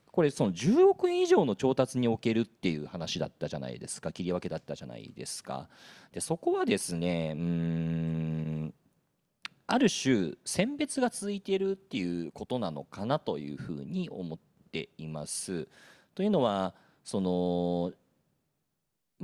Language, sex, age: Japanese, male, 40-59